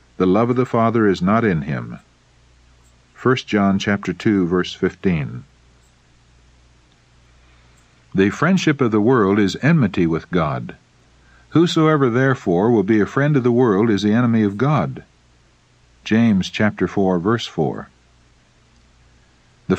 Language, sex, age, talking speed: English, male, 50-69, 135 wpm